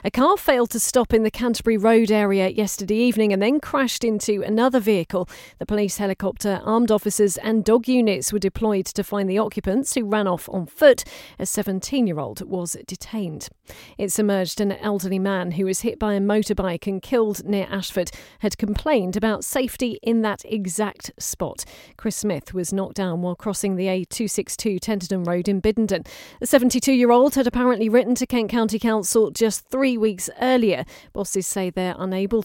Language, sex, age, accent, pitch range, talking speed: English, female, 40-59, British, 190-230 Hz, 180 wpm